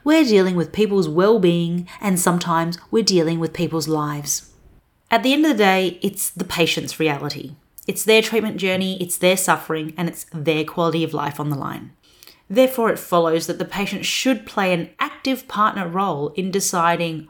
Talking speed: 180 wpm